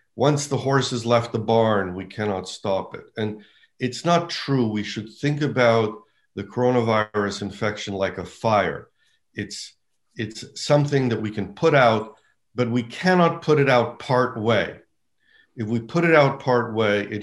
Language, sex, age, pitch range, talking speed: Swedish, male, 50-69, 110-140 Hz, 170 wpm